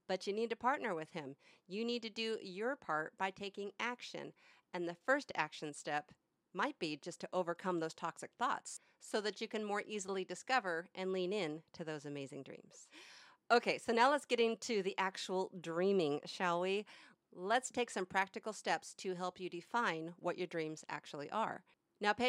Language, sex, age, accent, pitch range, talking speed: English, female, 40-59, American, 180-240 Hz, 190 wpm